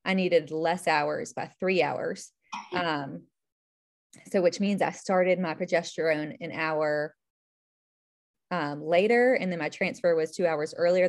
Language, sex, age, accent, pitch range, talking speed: English, female, 20-39, American, 160-195 Hz, 145 wpm